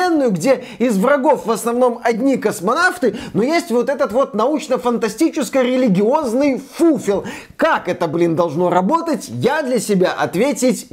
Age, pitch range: 30-49, 185-260 Hz